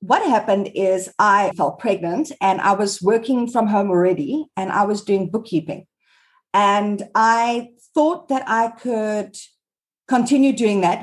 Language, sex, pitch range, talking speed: English, female, 195-265 Hz, 145 wpm